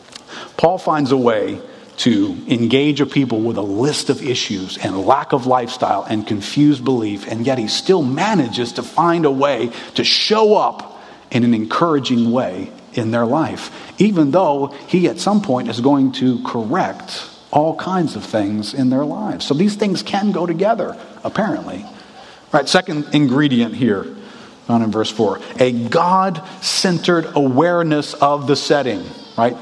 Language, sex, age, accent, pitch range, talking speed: English, male, 40-59, American, 125-175 Hz, 160 wpm